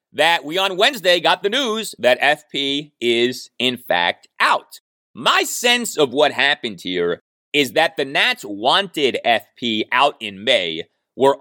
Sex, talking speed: male, 155 wpm